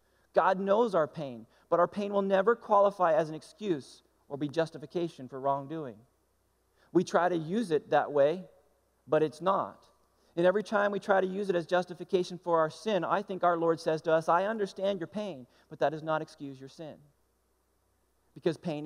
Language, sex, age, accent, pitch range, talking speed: English, male, 40-59, American, 110-170 Hz, 195 wpm